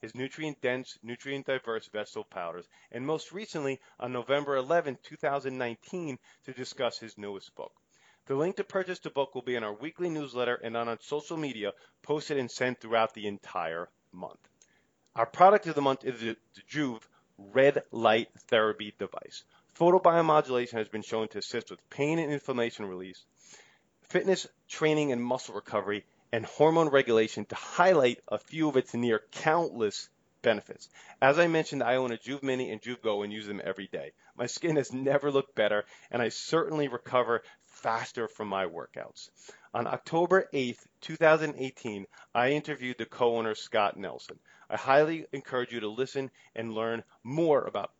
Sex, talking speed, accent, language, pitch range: male, 165 wpm, American, English, 110-145 Hz